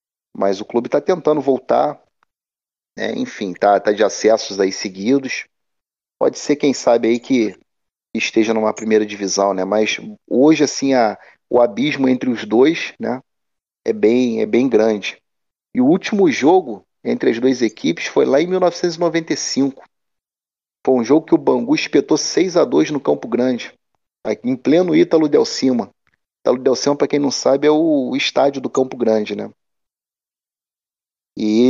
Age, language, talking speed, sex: 40-59, Portuguese, 155 wpm, male